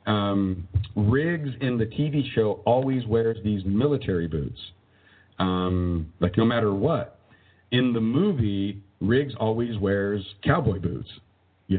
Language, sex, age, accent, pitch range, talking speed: English, male, 50-69, American, 100-125 Hz, 125 wpm